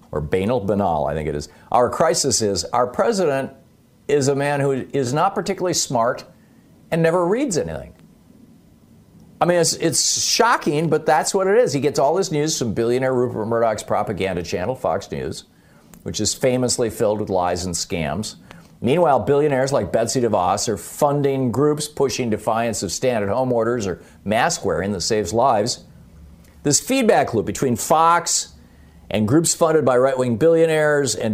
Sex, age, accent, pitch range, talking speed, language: male, 50-69, American, 100-140 Hz, 165 wpm, English